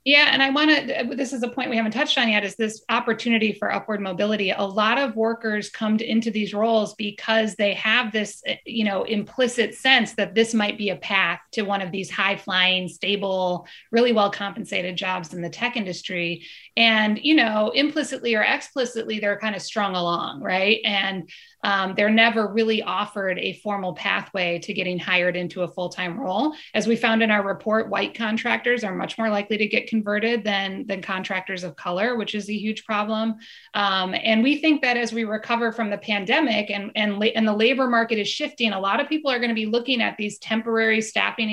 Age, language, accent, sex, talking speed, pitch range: 30-49, English, American, female, 200 wpm, 200-235 Hz